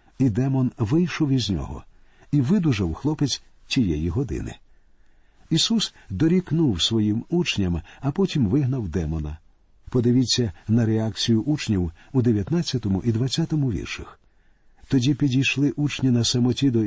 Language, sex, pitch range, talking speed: Ukrainian, male, 100-140 Hz, 115 wpm